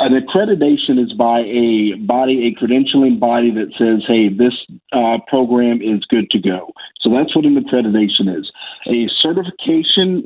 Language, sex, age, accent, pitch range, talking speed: English, male, 50-69, American, 115-165 Hz, 160 wpm